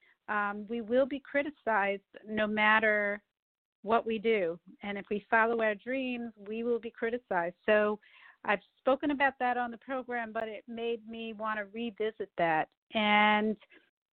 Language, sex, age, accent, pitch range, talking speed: English, female, 50-69, American, 210-260 Hz, 155 wpm